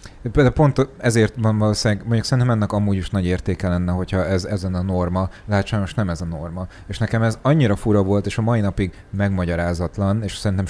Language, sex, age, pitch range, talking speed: Hungarian, male, 30-49, 95-115 Hz, 195 wpm